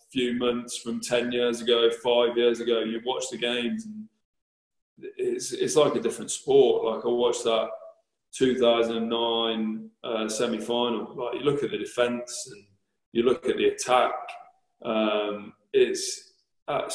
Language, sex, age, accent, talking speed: English, male, 20-39, British, 150 wpm